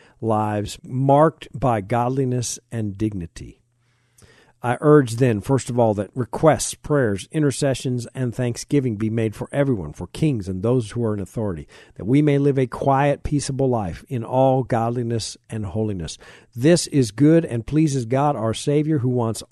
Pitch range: 105-135 Hz